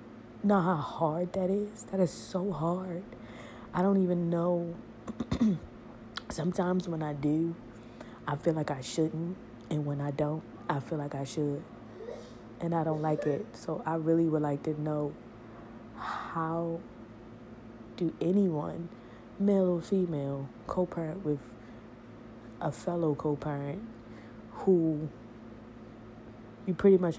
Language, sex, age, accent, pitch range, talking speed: English, female, 20-39, American, 120-170 Hz, 130 wpm